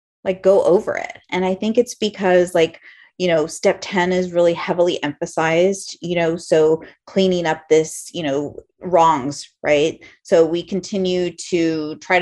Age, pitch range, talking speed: 30-49, 165-205 Hz, 160 wpm